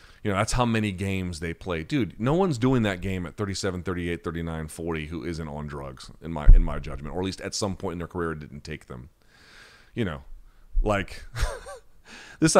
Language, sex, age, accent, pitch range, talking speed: English, male, 30-49, American, 85-120 Hz, 215 wpm